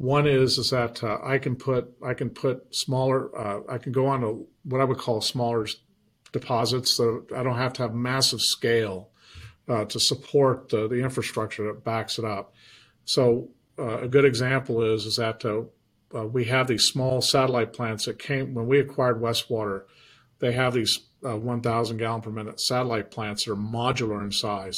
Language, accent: English, American